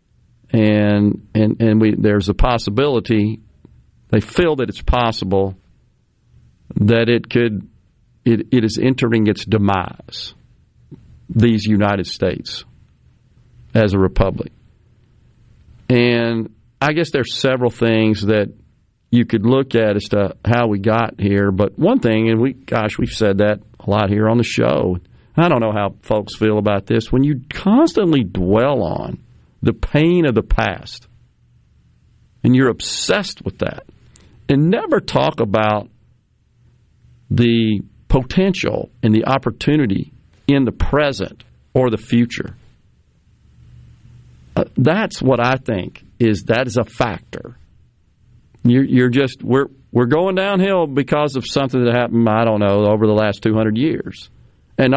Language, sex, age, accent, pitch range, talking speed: English, male, 40-59, American, 105-125 Hz, 140 wpm